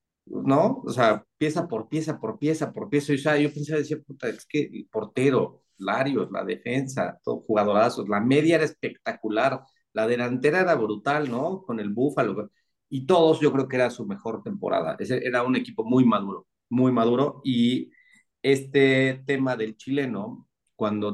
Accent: Mexican